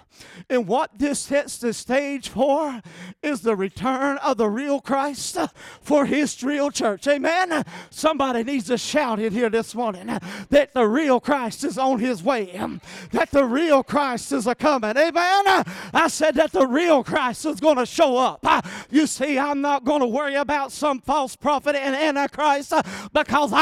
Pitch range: 245-305 Hz